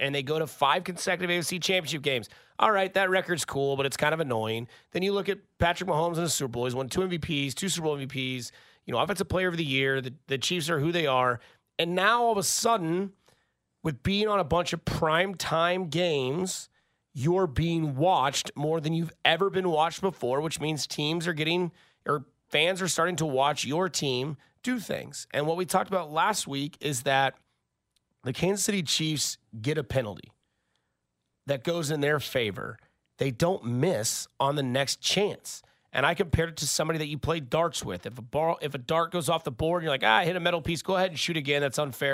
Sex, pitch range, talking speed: male, 140-175 Hz, 220 wpm